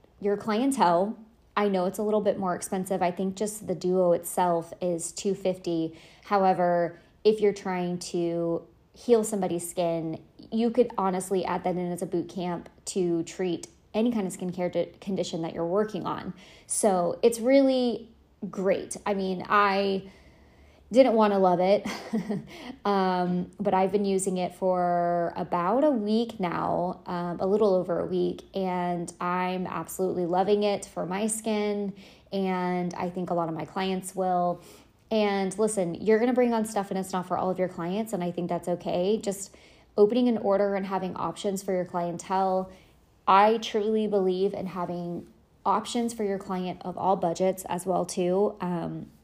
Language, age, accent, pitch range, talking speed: English, 20-39, American, 175-205 Hz, 170 wpm